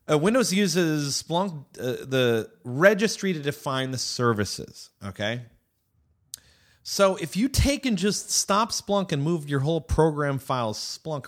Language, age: English, 30-49